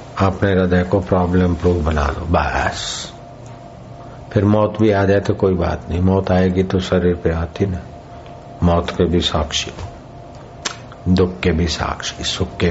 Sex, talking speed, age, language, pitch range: male, 160 wpm, 60-79, Hindi, 90-105 Hz